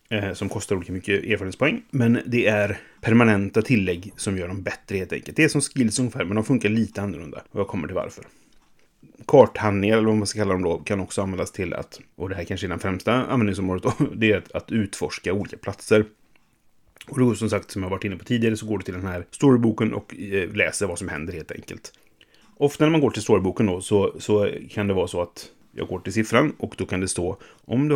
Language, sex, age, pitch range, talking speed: Swedish, male, 30-49, 95-115 Hz, 230 wpm